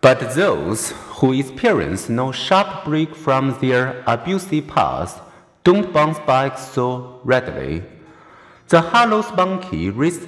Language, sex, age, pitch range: Chinese, male, 50-69, 135-180 Hz